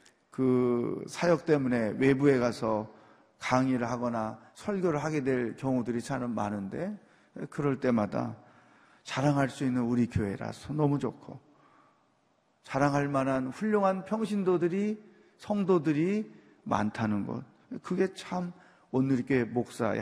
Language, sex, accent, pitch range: Korean, male, native, 115-180 Hz